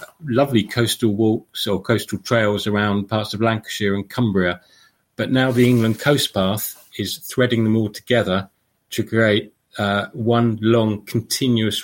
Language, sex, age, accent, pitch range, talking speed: English, male, 40-59, British, 100-115 Hz, 145 wpm